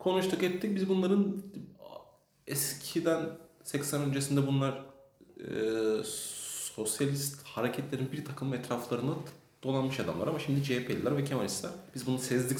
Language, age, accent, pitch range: Turkish, 30-49, native, 110-165 Hz